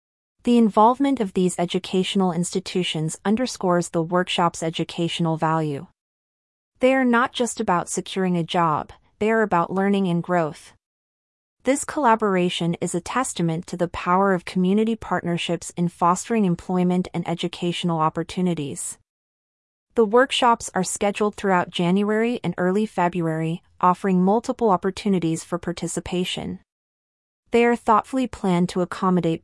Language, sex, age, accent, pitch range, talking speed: English, female, 30-49, American, 170-210 Hz, 125 wpm